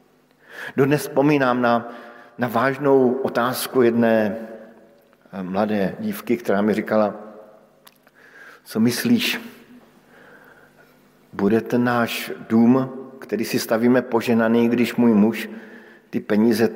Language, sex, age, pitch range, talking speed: Slovak, male, 50-69, 110-135 Hz, 95 wpm